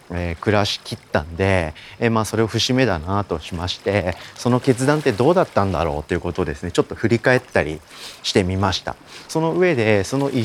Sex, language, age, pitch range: male, Japanese, 30-49, 90-130 Hz